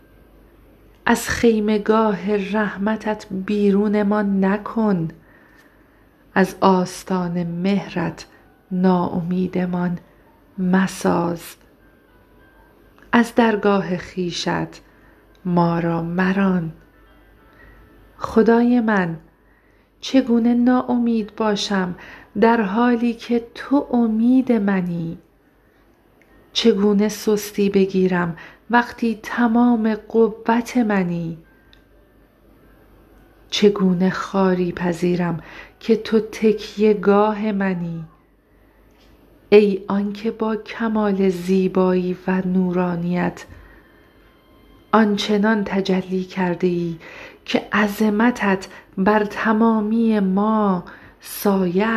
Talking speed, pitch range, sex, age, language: 70 wpm, 185-220 Hz, female, 50-69, Persian